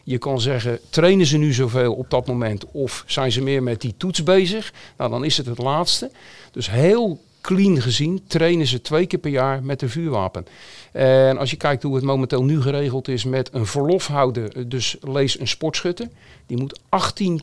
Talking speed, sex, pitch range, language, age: 195 wpm, male, 130-165 Hz, Dutch, 50-69